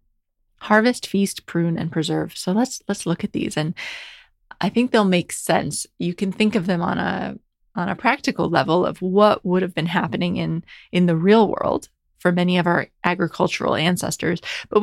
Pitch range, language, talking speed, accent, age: 175-215 Hz, English, 185 wpm, American, 30-49